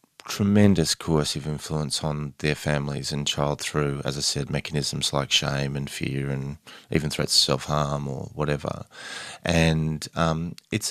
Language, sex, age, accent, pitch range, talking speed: English, male, 30-49, Australian, 70-80 Hz, 150 wpm